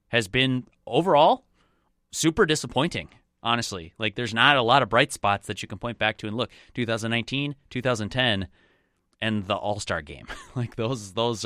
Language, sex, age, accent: English, male, 30-49, American